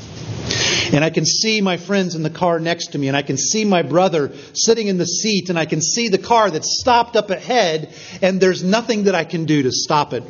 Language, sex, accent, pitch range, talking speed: English, male, American, 125-165 Hz, 245 wpm